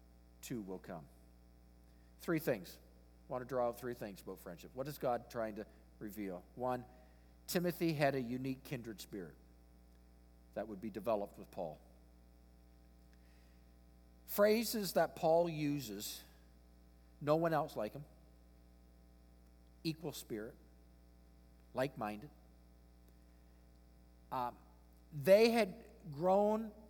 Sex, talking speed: male, 110 wpm